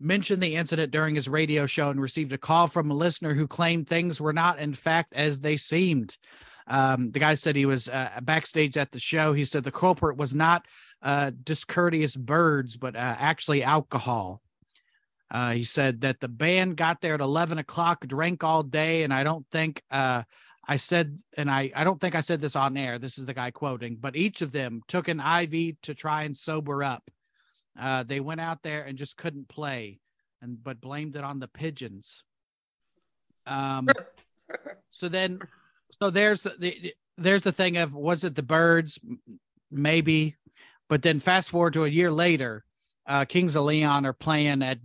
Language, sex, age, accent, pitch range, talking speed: English, male, 40-59, American, 140-170 Hz, 190 wpm